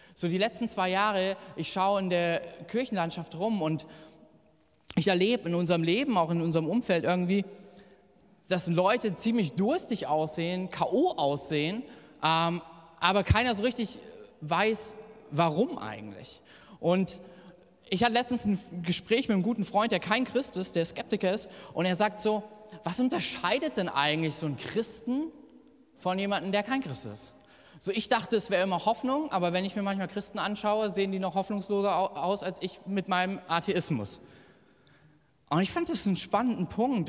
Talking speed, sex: 165 wpm, male